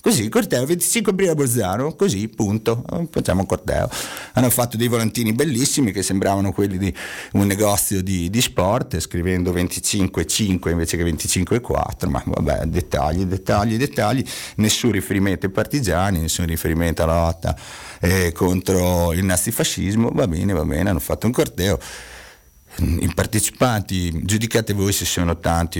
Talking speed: 145 wpm